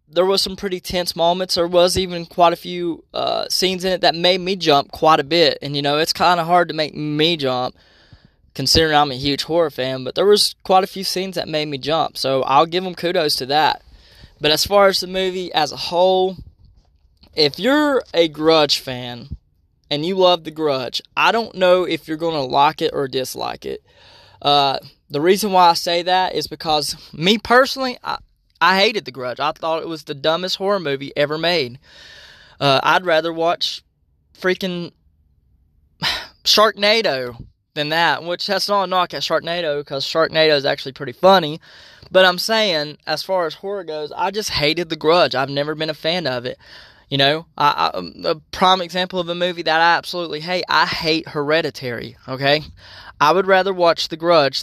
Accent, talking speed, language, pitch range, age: American, 195 wpm, English, 145-185 Hz, 20-39